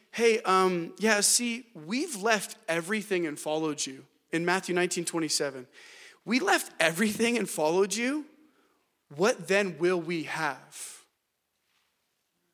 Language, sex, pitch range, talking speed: English, male, 170-220 Hz, 120 wpm